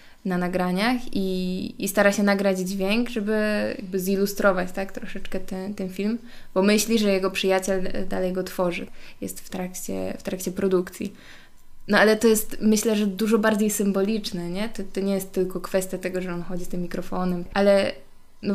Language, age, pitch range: Polish, 20-39, 185-210 Hz